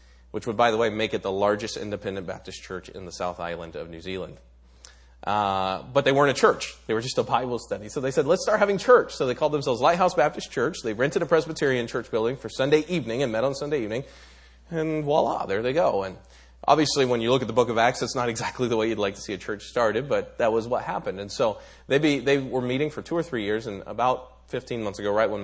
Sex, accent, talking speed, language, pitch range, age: male, American, 255 wpm, English, 95-135 Hz, 30-49